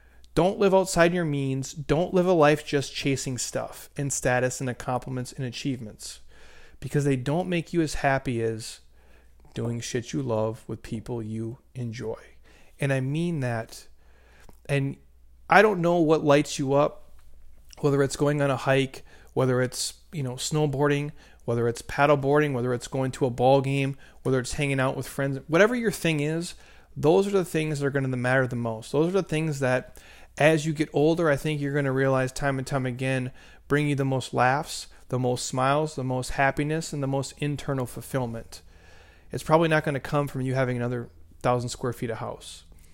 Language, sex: English, male